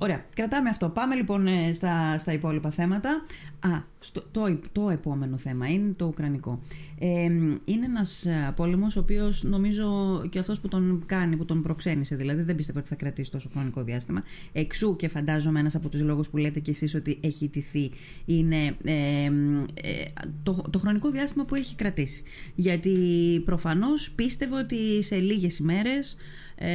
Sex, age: female, 30-49